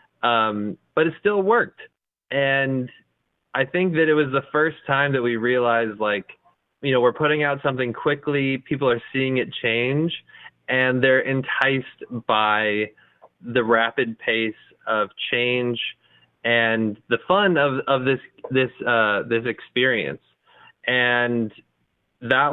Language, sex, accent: English, male, American